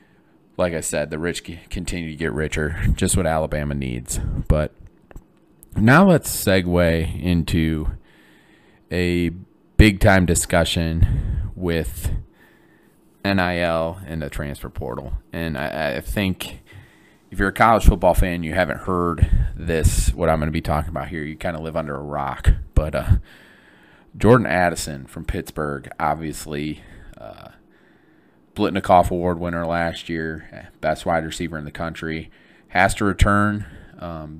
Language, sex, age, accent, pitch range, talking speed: English, male, 30-49, American, 80-95 Hz, 135 wpm